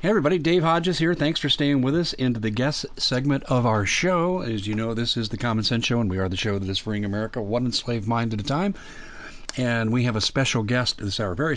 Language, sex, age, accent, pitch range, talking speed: English, male, 40-59, American, 105-130 Hz, 265 wpm